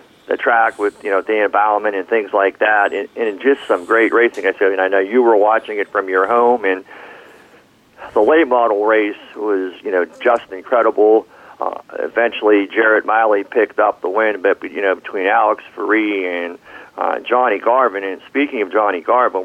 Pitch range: 100-125 Hz